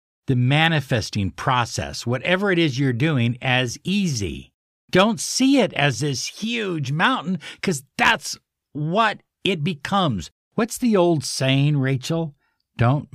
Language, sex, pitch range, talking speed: English, male, 110-165 Hz, 130 wpm